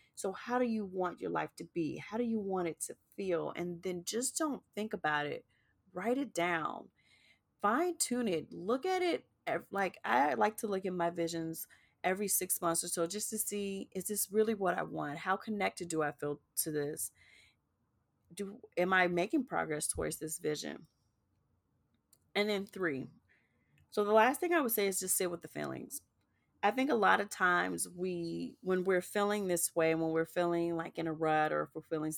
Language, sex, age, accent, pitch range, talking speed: English, female, 30-49, American, 160-205 Hz, 200 wpm